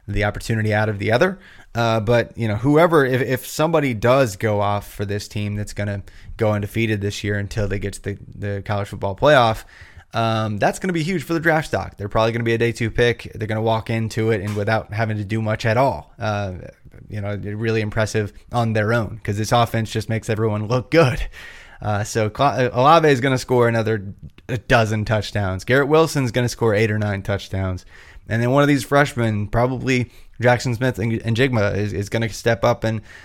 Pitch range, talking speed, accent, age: 105-120 Hz, 225 wpm, American, 20-39